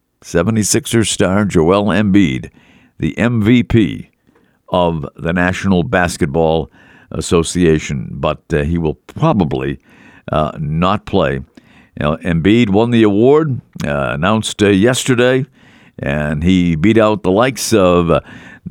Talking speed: 110 wpm